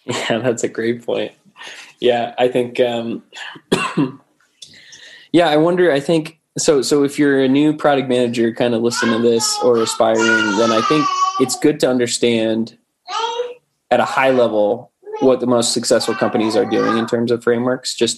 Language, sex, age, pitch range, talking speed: English, male, 20-39, 110-135 Hz, 170 wpm